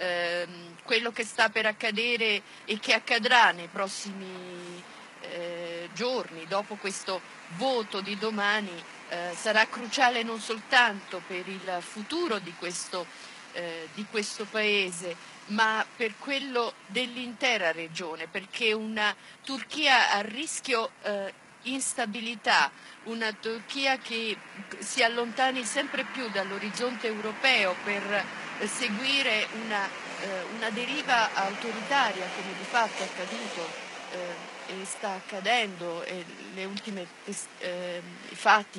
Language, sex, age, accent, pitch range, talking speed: Italian, female, 50-69, native, 190-235 Hz, 110 wpm